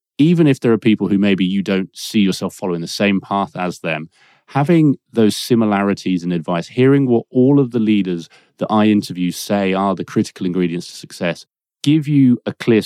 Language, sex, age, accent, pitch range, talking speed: English, male, 30-49, British, 90-115 Hz, 195 wpm